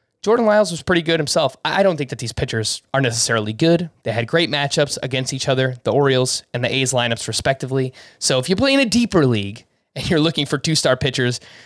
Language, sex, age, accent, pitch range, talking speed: English, male, 20-39, American, 125-165 Hz, 220 wpm